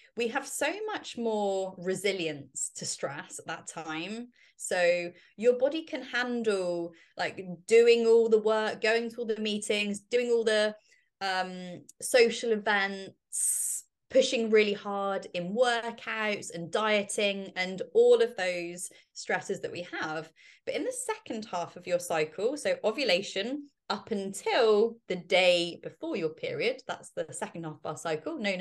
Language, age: English, 20-39